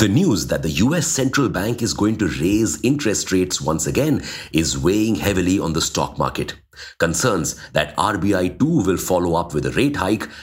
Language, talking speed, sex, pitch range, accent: English, 190 wpm, male, 80-125 Hz, Indian